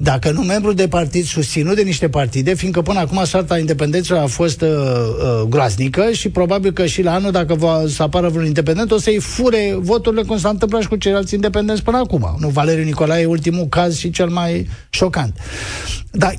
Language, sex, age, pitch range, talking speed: Romanian, male, 50-69, 145-200 Hz, 200 wpm